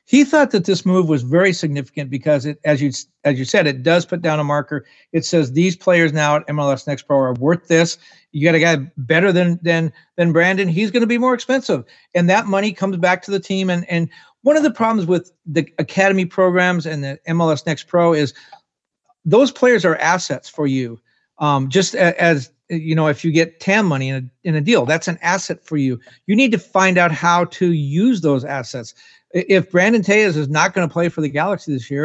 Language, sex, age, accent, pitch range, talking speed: English, male, 50-69, American, 150-185 Hz, 230 wpm